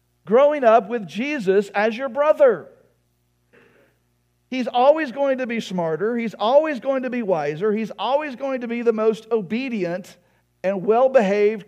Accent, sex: American, male